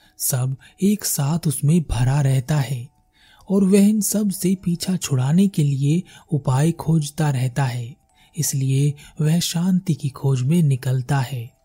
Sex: male